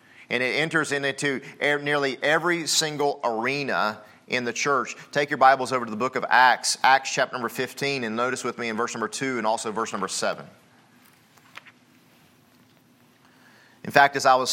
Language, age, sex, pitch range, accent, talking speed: English, 30-49, male, 130-155 Hz, American, 175 wpm